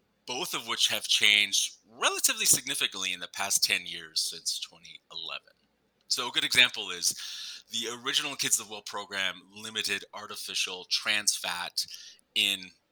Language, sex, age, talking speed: English, male, 30-49, 140 wpm